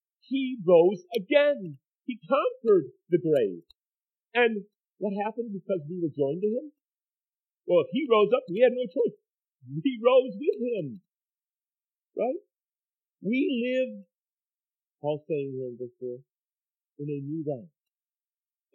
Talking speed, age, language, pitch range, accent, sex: 130 wpm, 50-69, English, 140-210 Hz, American, male